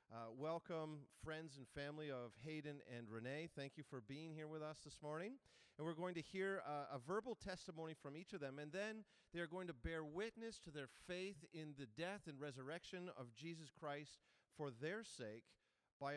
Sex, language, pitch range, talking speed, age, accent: male, English, 140-175 Hz, 195 wpm, 40-59, American